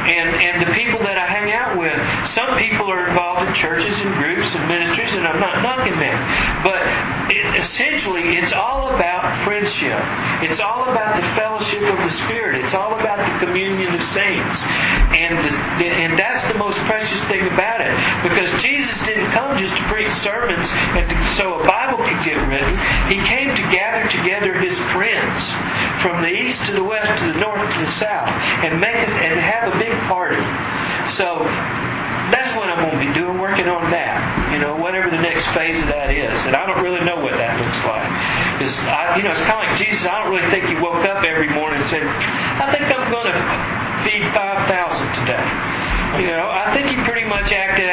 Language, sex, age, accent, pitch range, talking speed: English, male, 50-69, American, 170-205 Hz, 205 wpm